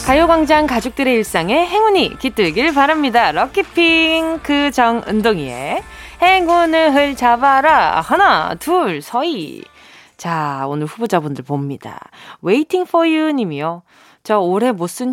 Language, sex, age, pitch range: Korean, female, 20-39, 205-310 Hz